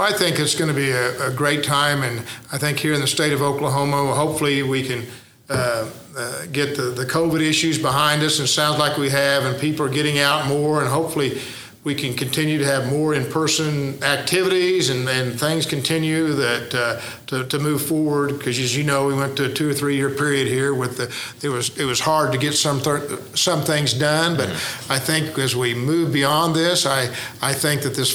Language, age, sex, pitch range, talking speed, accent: English, 50-69, male, 130-150 Hz, 215 wpm, American